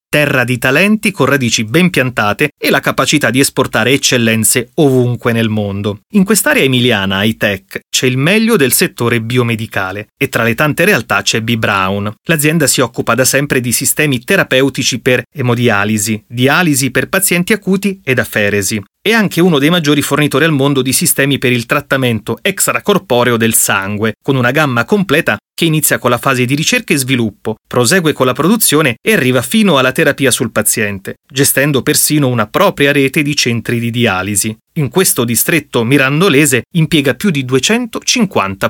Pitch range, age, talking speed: 120-150 Hz, 30-49, 165 wpm